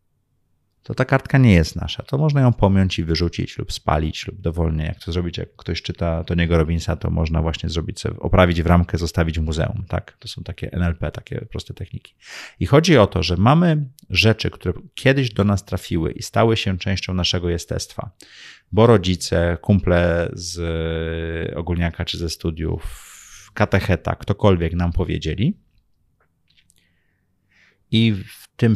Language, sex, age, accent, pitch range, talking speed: Polish, male, 30-49, native, 85-105 Hz, 155 wpm